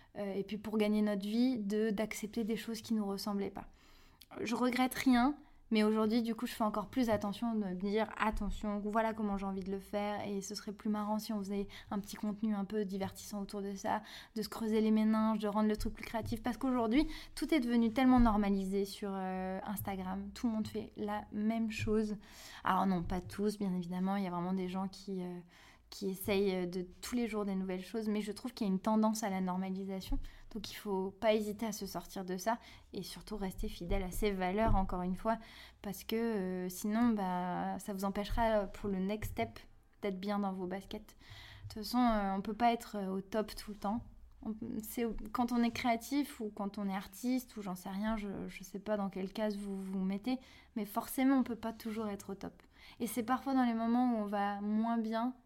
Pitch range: 195-225 Hz